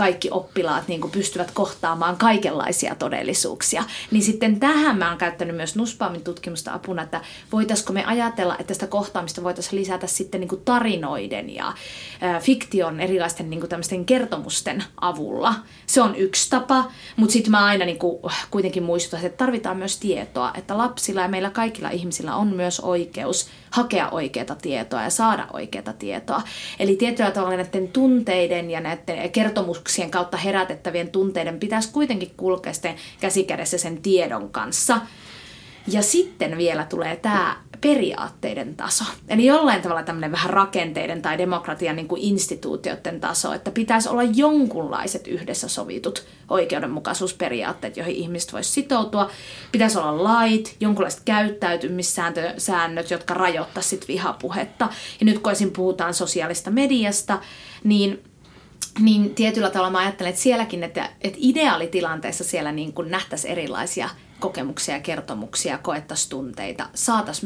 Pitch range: 175-220 Hz